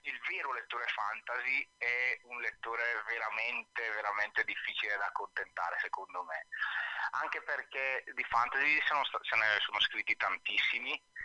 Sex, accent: male, native